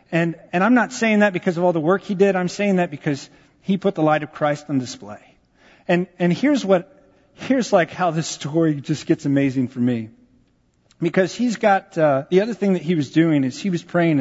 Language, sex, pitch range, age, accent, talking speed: English, male, 140-180 Hz, 40-59, American, 230 wpm